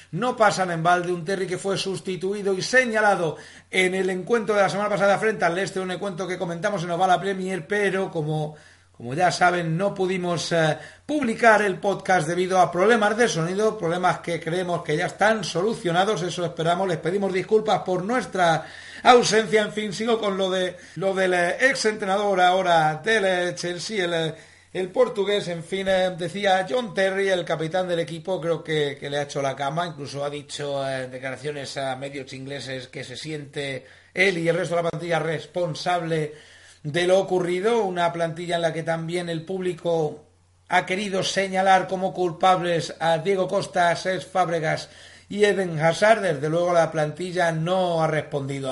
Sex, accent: male, Spanish